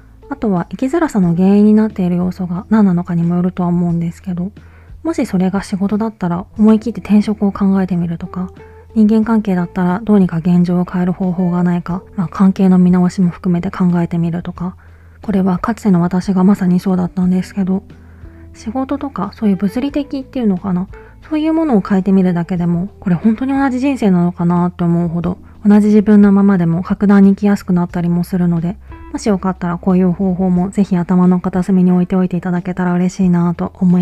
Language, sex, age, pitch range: Japanese, female, 20-39, 175-205 Hz